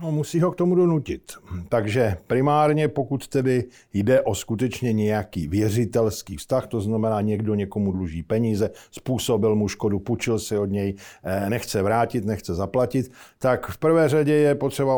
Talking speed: 155 wpm